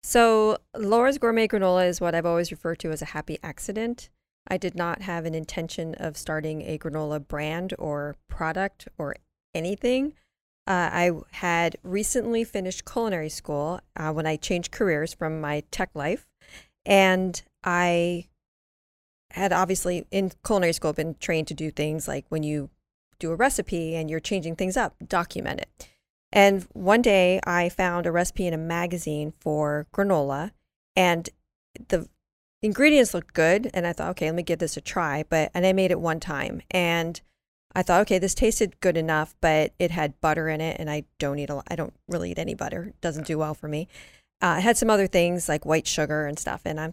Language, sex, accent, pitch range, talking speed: English, female, American, 155-190 Hz, 190 wpm